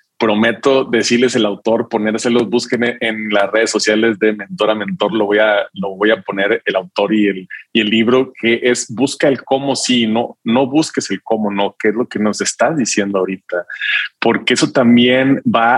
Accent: Mexican